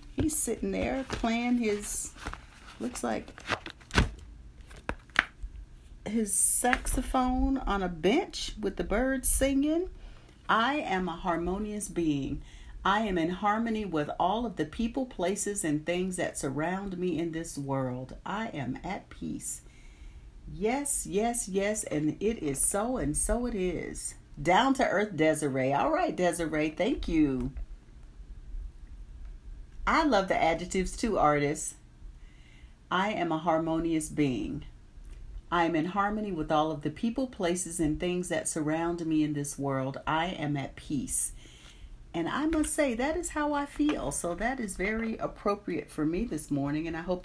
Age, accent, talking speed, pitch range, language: 50-69, American, 150 wpm, 150-235 Hz, English